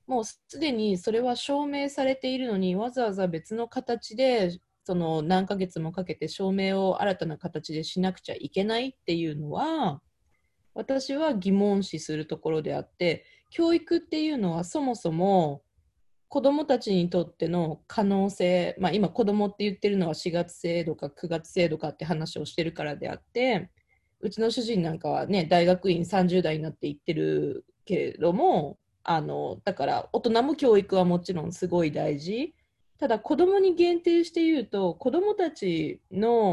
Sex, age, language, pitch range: female, 20-39, Japanese, 160-230 Hz